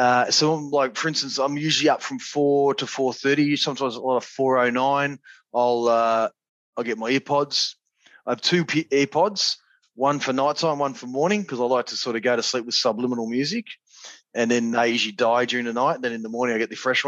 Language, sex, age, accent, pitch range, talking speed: English, male, 20-39, Australian, 115-140 Hz, 230 wpm